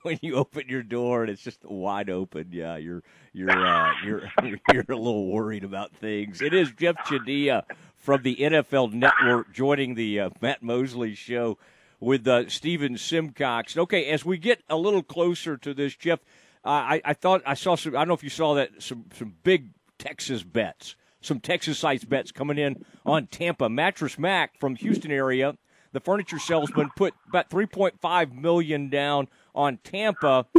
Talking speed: 180 wpm